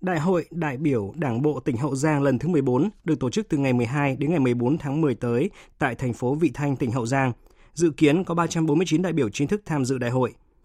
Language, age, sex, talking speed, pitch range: Vietnamese, 20-39, male, 250 wpm, 125-155 Hz